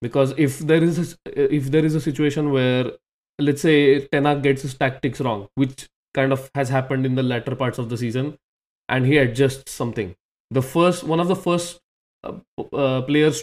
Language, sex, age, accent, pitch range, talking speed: English, male, 20-39, Indian, 130-165 Hz, 190 wpm